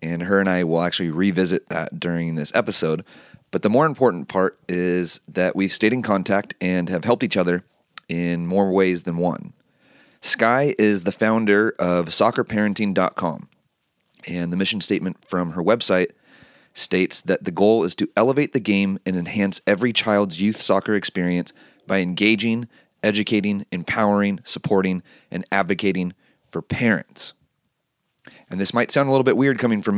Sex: male